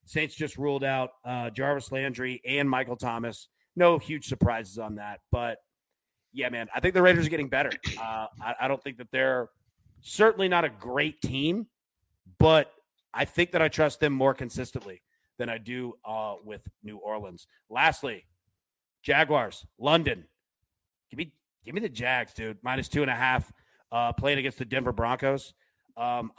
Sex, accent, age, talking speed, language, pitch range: male, American, 30-49, 170 wpm, English, 120-170 Hz